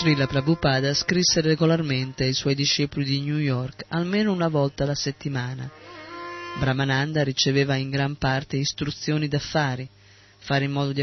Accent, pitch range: native, 135-160 Hz